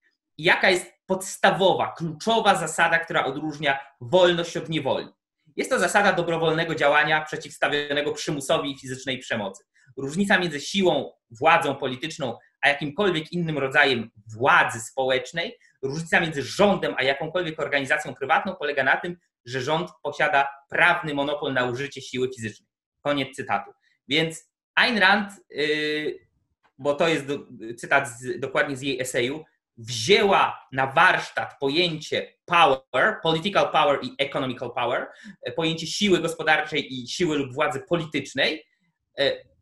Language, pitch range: Polish, 140-180 Hz